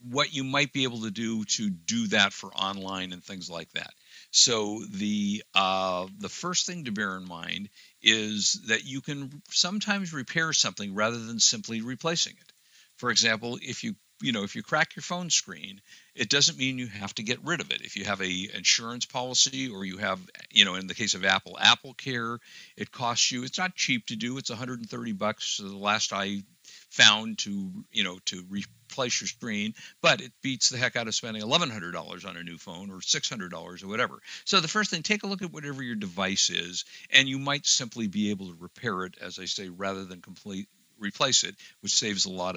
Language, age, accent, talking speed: English, 60-79, American, 215 wpm